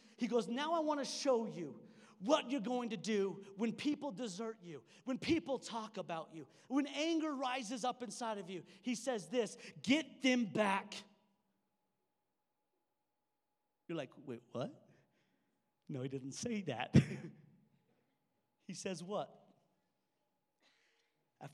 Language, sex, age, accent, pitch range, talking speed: English, male, 40-59, American, 180-255 Hz, 135 wpm